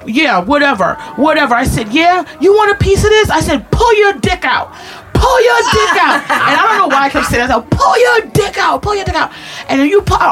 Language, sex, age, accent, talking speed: English, female, 30-49, American, 255 wpm